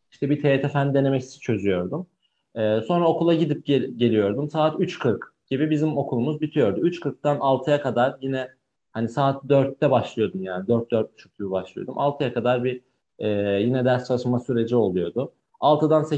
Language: Turkish